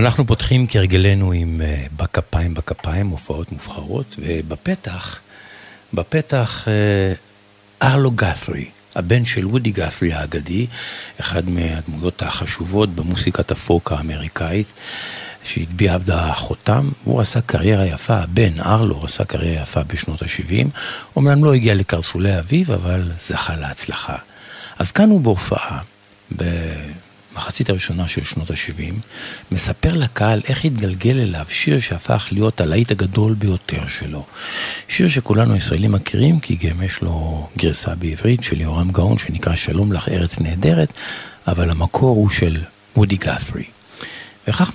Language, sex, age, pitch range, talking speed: Hebrew, male, 50-69, 85-110 Hz, 125 wpm